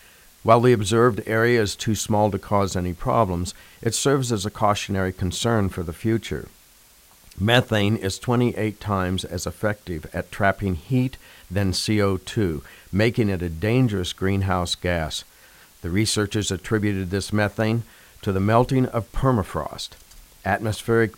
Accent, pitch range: American, 90-110 Hz